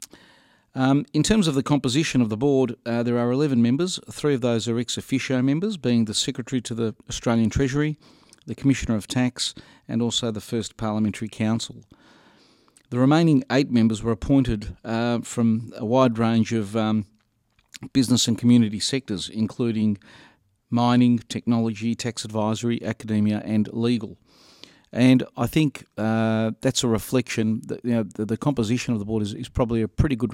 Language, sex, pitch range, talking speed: English, male, 110-130 Hz, 165 wpm